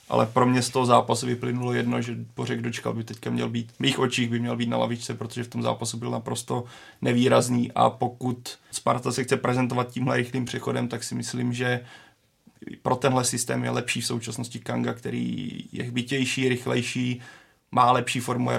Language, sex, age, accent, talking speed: Czech, male, 30-49, native, 190 wpm